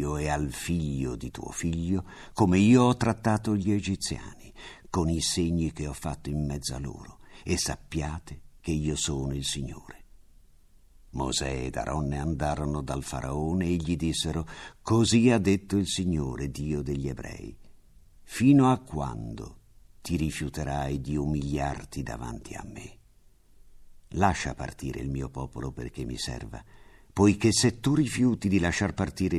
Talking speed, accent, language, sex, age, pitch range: 145 wpm, native, Italian, male, 50-69, 75-95 Hz